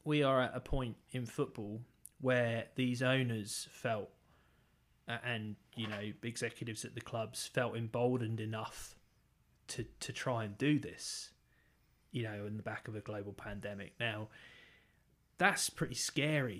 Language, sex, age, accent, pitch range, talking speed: English, male, 20-39, British, 110-130 Hz, 145 wpm